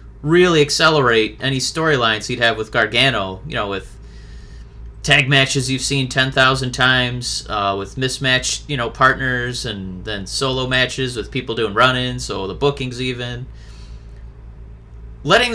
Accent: American